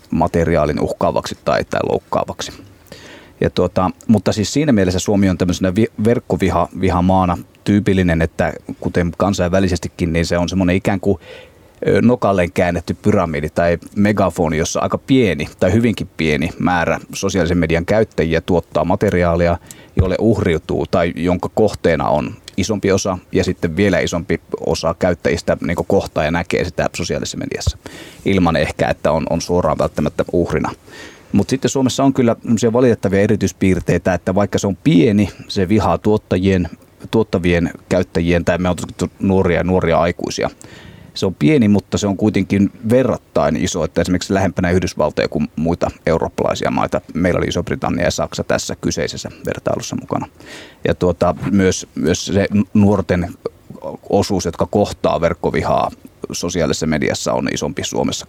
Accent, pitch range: native, 85-100 Hz